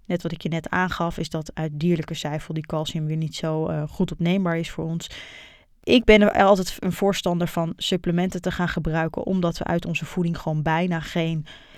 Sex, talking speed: female, 210 wpm